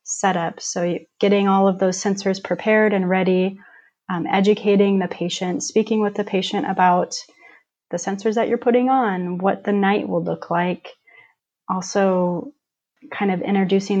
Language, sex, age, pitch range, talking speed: English, female, 30-49, 180-200 Hz, 145 wpm